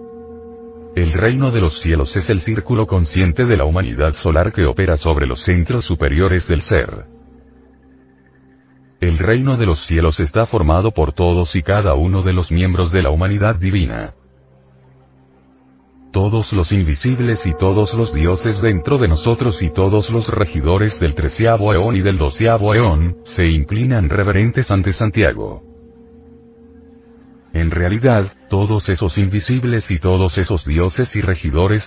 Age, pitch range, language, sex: 40-59, 80-115 Hz, Spanish, male